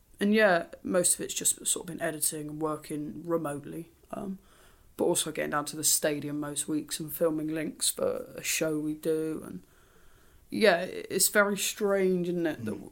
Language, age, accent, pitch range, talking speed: English, 20-39, British, 155-175 Hz, 180 wpm